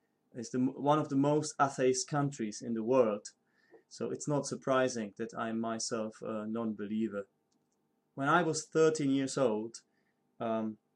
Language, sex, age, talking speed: English, male, 20-39, 140 wpm